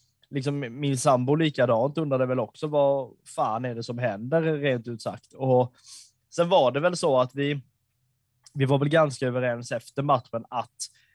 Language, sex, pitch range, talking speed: Swedish, male, 125-145 Hz, 170 wpm